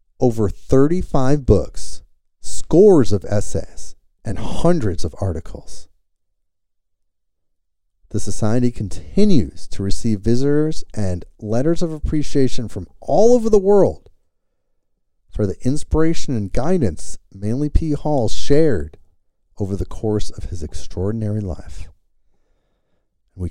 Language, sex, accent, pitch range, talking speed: English, male, American, 80-110 Hz, 105 wpm